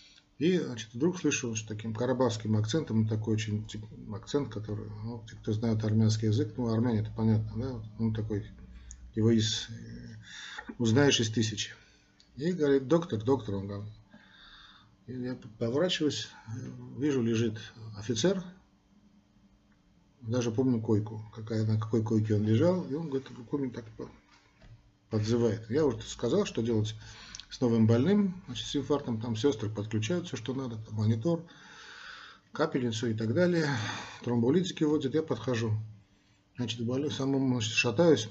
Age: 40-59